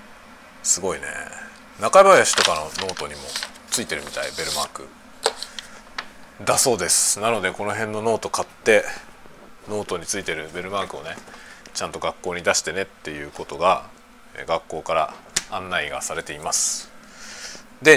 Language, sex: Japanese, male